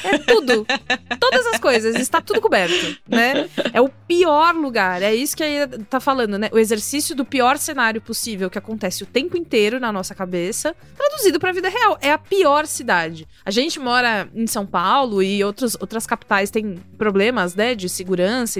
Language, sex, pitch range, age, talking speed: Portuguese, female, 200-290 Hz, 20-39, 185 wpm